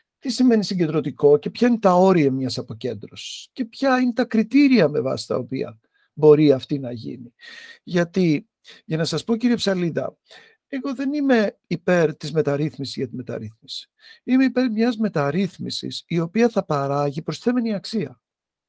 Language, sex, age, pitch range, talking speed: Greek, male, 50-69, 155-245 Hz, 155 wpm